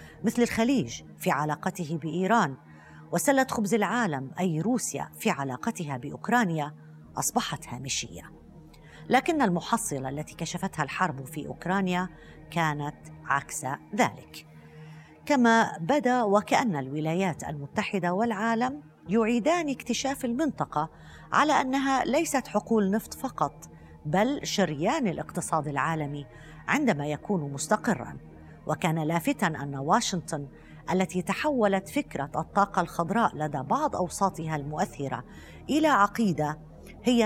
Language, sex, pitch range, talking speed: Arabic, female, 150-220 Hz, 100 wpm